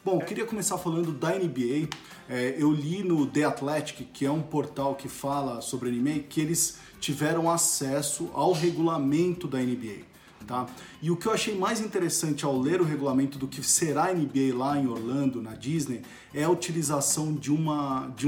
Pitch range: 130-160 Hz